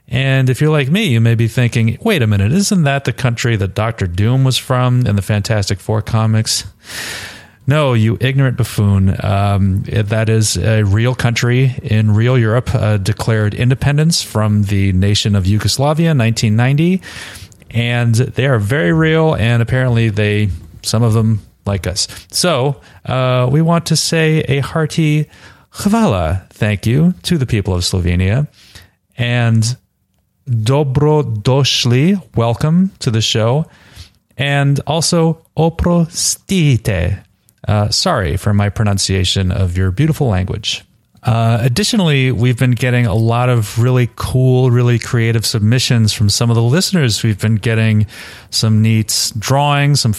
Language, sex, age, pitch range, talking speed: English, male, 30-49, 105-135 Hz, 145 wpm